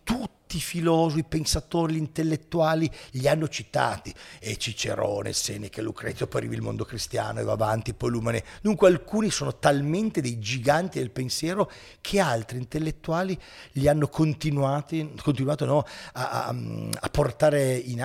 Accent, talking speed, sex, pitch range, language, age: native, 145 wpm, male, 120-165 Hz, Italian, 40-59